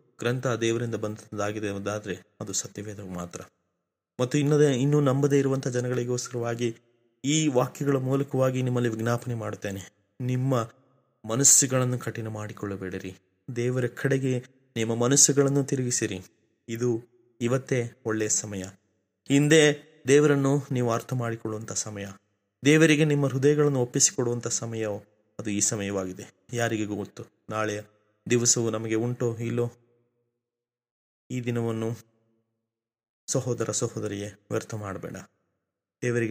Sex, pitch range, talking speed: male, 110-125 Hz, 55 wpm